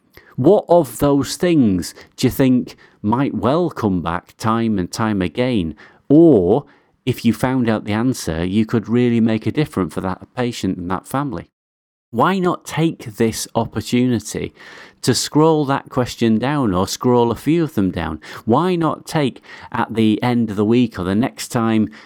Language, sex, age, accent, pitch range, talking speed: English, male, 40-59, British, 100-130 Hz, 175 wpm